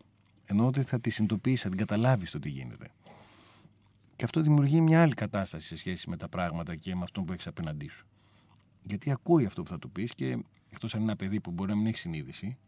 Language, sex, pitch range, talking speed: Greek, male, 95-115 Hz, 225 wpm